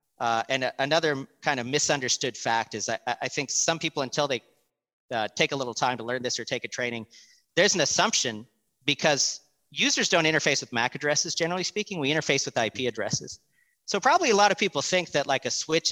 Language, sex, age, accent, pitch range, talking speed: English, male, 40-59, American, 125-165 Hz, 205 wpm